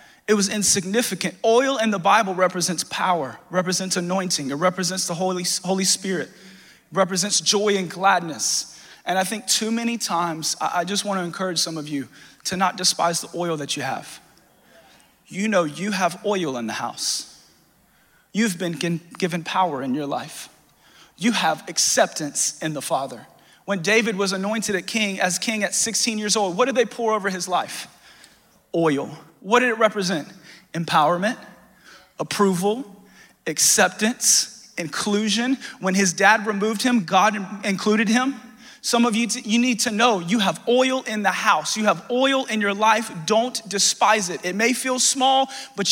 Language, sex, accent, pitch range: English, male, American, 185-230 Hz